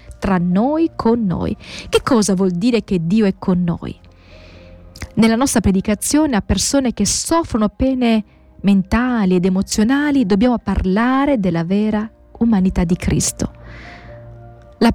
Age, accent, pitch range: 30-49, native, 180-260 Hz